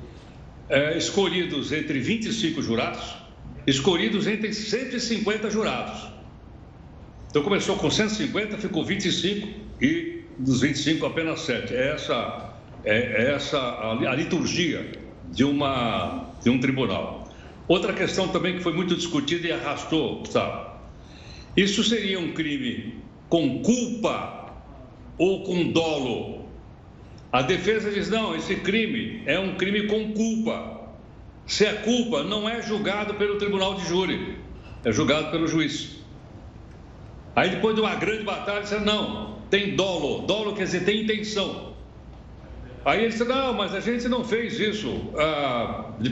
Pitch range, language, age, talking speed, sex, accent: 150-215 Hz, Portuguese, 60-79, 135 wpm, male, Brazilian